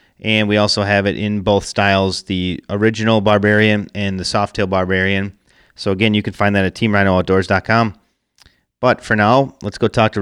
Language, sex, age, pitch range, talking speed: English, male, 30-49, 100-115 Hz, 180 wpm